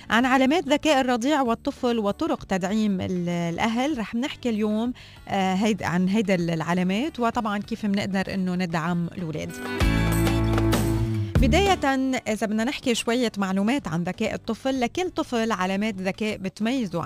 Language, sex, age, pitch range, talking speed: Arabic, female, 20-39, 180-225 Hz, 125 wpm